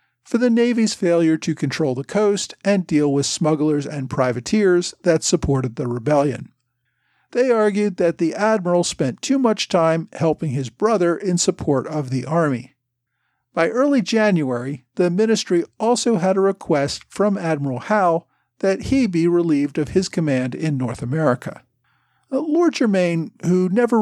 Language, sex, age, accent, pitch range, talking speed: English, male, 50-69, American, 140-210 Hz, 150 wpm